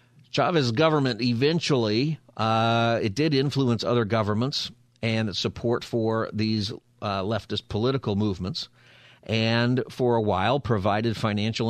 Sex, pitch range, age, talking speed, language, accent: male, 100-125 Hz, 50-69, 125 wpm, English, American